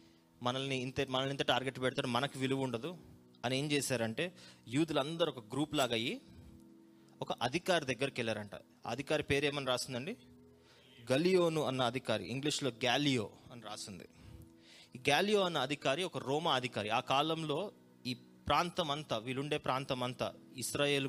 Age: 20-39